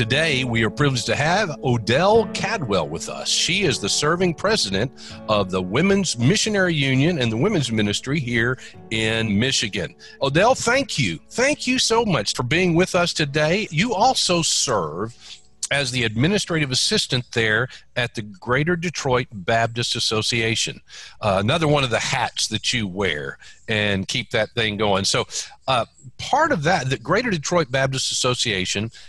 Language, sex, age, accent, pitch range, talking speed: English, male, 50-69, American, 105-140 Hz, 160 wpm